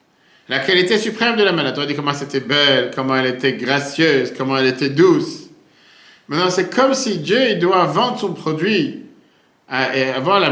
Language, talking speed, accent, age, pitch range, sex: French, 185 wpm, French, 50-69, 140-210 Hz, male